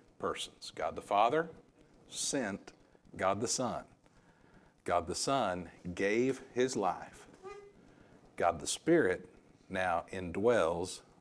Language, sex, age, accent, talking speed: English, male, 60-79, American, 100 wpm